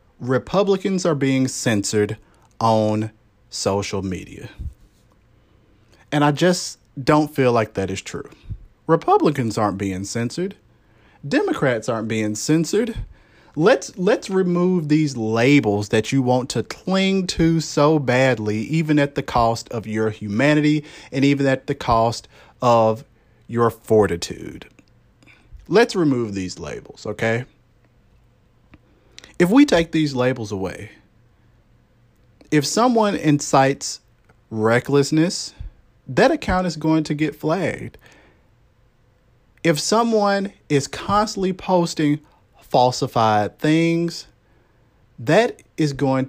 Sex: male